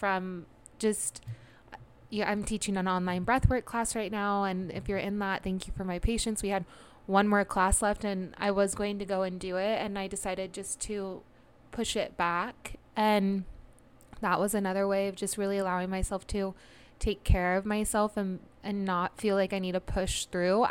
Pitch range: 185-215 Hz